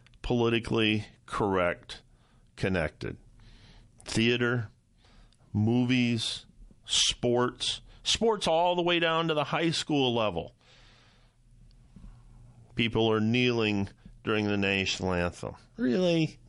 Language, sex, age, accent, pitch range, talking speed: English, male, 40-59, American, 110-125 Hz, 85 wpm